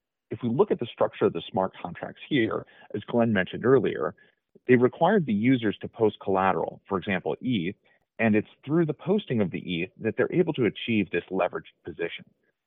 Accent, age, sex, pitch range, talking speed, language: American, 30-49, male, 95-140 Hz, 195 wpm, English